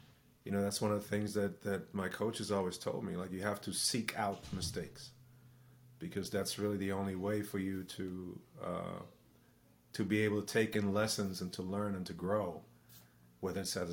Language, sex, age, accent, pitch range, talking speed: English, male, 30-49, American, 90-105 Hz, 200 wpm